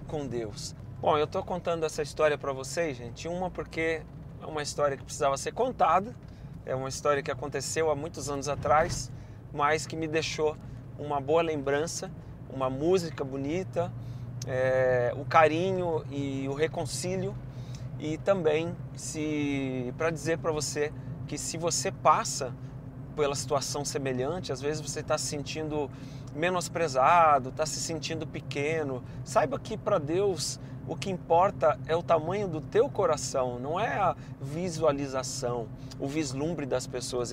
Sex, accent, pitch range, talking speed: male, Brazilian, 130-165 Hz, 145 wpm